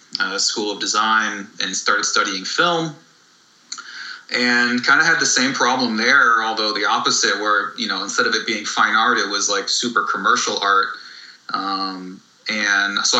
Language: English